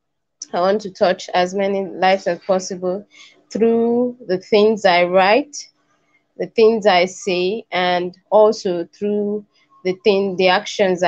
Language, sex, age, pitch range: Hindi, female, 20-39, 180-215 Hz